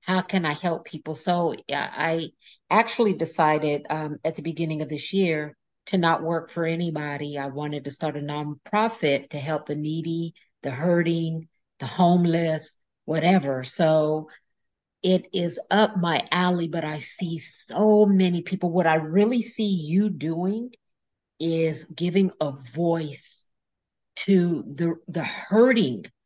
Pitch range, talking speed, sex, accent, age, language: 155-185 Hz, 140 wpm, female, American, 50-69, English